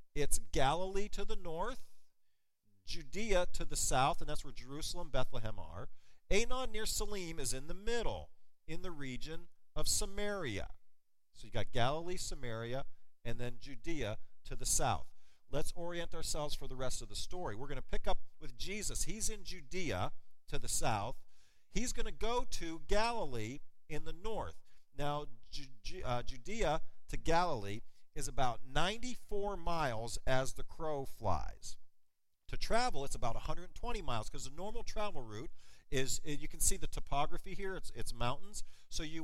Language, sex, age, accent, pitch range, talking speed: English, male, 50-69, American, 130-180 Hz, 160 wpm